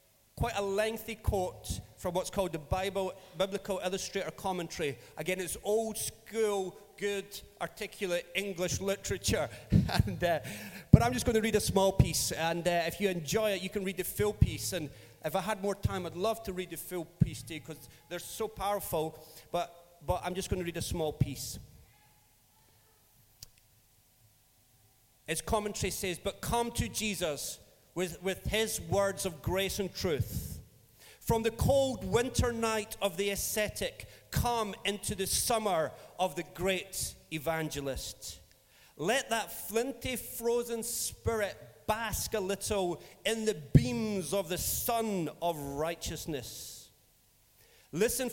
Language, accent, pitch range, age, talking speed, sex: English, British, 145-205 Hz, 40-59, 150 wpm, male